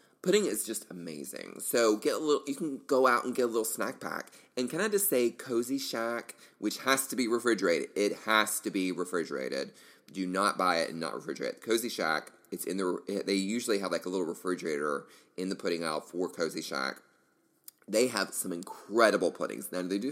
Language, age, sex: English, 30-49, male